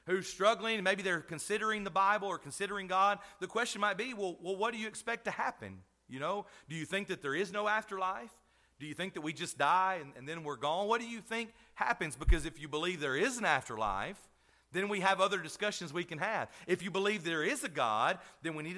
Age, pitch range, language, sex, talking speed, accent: 40-59, 135-200 Hz, English, male, 240 wpm, American